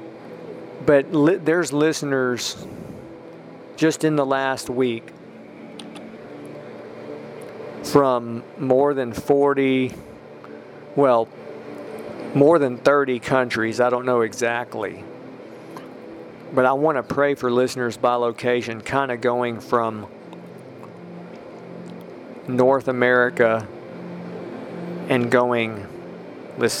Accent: American